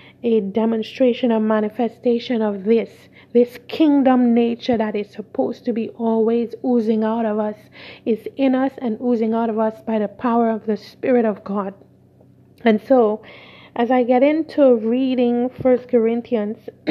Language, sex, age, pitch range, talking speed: English, female, 30-49, 215-250 Hz, 155 wpm